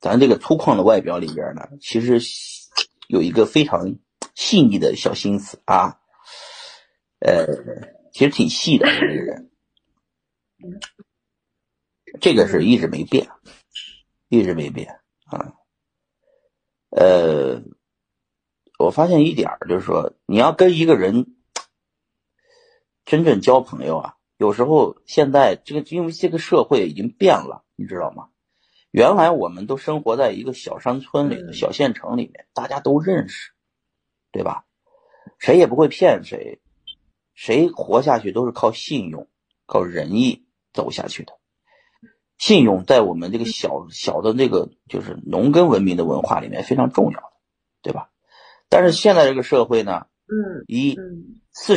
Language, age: Chinese, 50-69